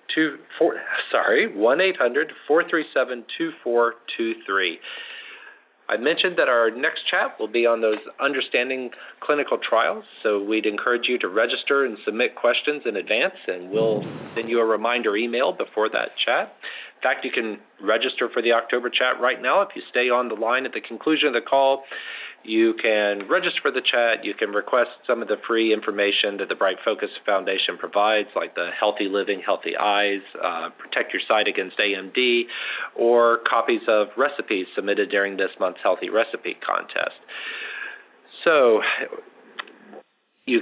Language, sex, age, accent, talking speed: English, male, 40-59, American, 160 wpm